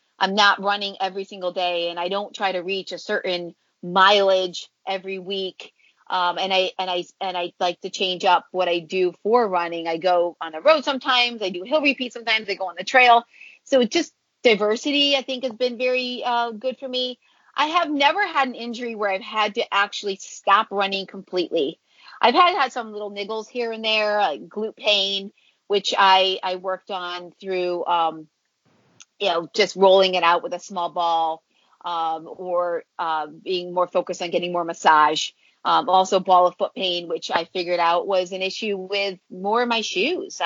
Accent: American